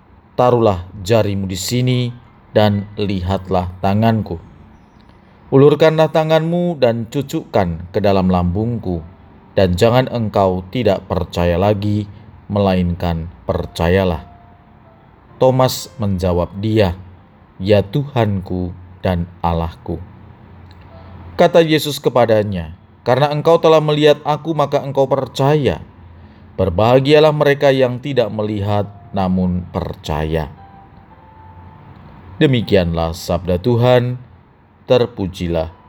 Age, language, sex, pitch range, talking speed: 40-59, Indonesian, male, 95-125 Hz, 85 wpm